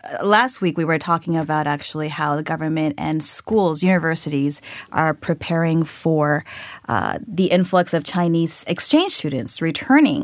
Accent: American